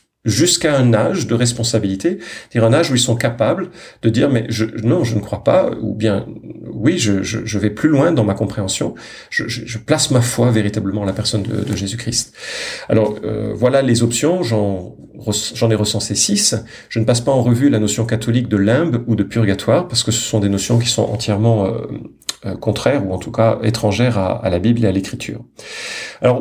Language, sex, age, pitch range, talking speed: French, male, 40-59, 105-130 Hz, 225 wpm